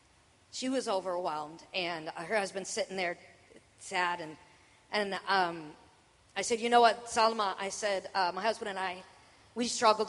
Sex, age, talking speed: female, 40-59, 160 wpm